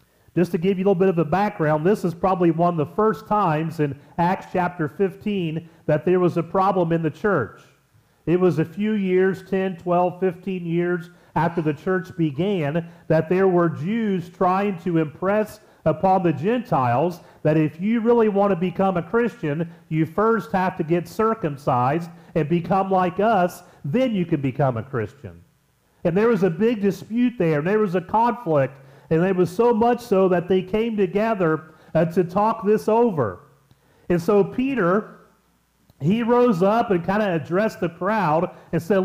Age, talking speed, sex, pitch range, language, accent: 40-59, 180 wpm, male, 165-205 Hz, English, American